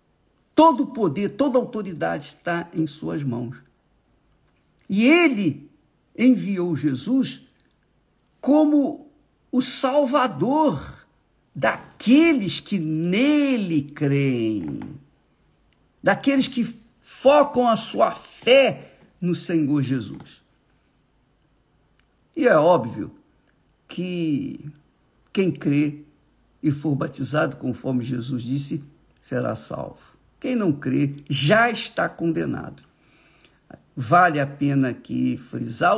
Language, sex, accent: Portuguese, male, Brazilian